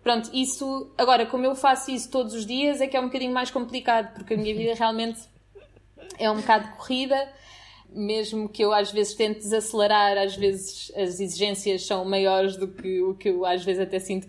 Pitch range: 200-230 Hz